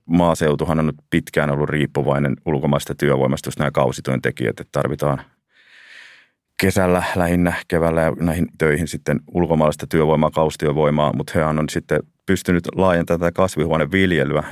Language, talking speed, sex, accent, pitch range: Finnish, 125 wpm, male, native, 75-85 Hz